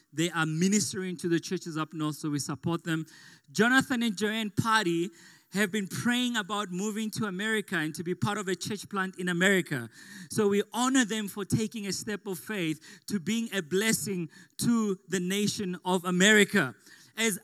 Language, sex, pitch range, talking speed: English, male, 160-205 Hz, 180 wpm